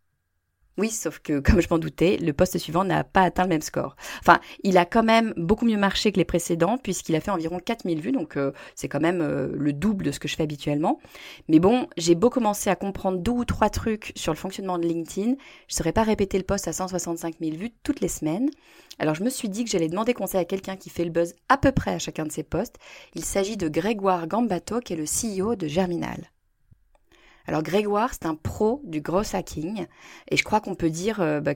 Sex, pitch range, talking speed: female, 165-220 Hz, 240 wpm